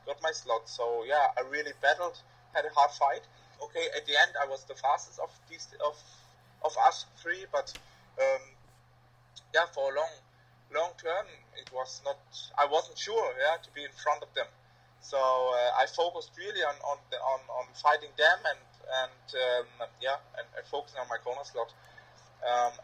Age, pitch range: 20-39, 125-155 Hz